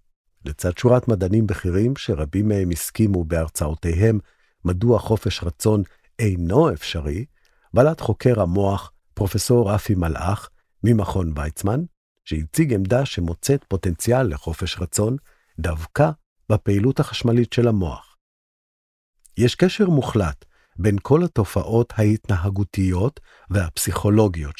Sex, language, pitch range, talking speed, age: male, Hebrew, 90-120 Hz, 100 wpm, 50-69